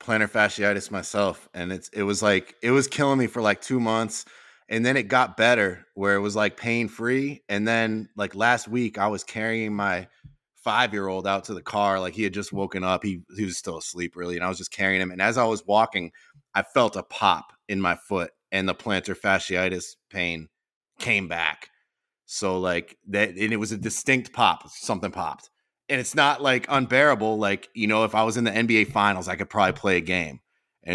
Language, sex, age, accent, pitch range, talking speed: English, male, 20-39, American, 95-115 Hz, 215 wpm